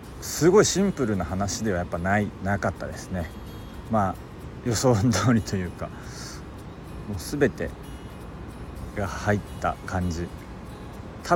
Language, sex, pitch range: Japanese, male, 95-120 Hz